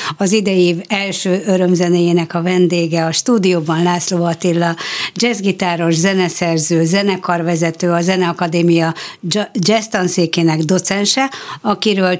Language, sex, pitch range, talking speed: Hungarian, female, 165-190 Hz, 90 wpm